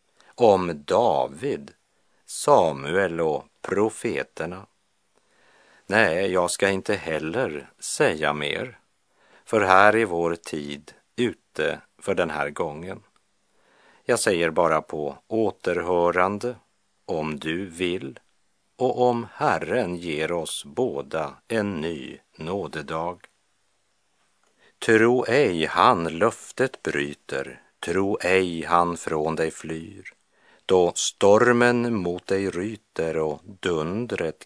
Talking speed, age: 100 wpm, 50-69